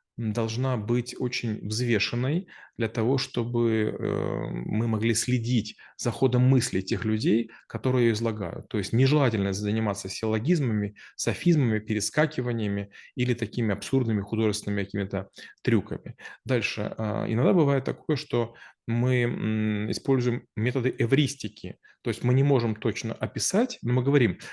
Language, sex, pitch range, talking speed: Russian, male, 110-130 Hz, 120 wpm